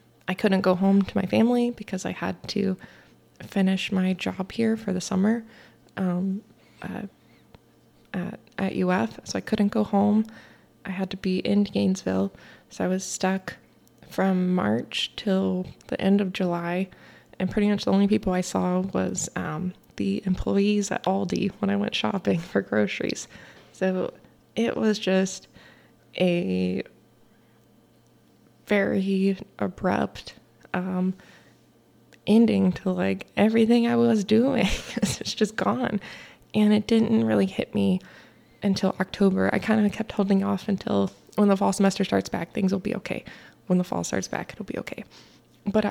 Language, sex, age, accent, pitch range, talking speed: English, female, 20-39, American, 185-210 Hz, 150 wpm